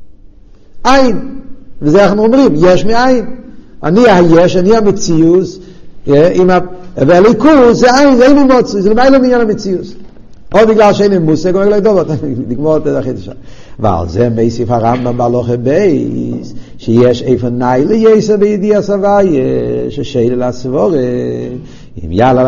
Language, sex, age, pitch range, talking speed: Hebrew, male, 50-69, 120-170 Hz, 80 wpm